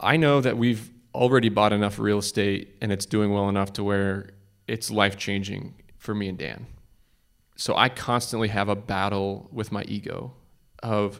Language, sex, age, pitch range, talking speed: English, male, 20-39, 100-110 Hz, 170 wpm